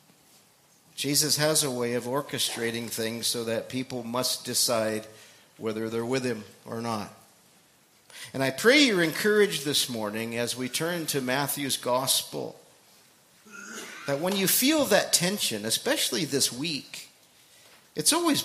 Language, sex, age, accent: English, male, 50-69, American